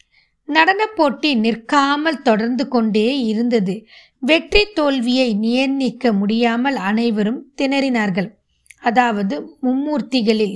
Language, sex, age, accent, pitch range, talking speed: Tamil, female, 20-39, native, 220-275 Hz, 80 wpm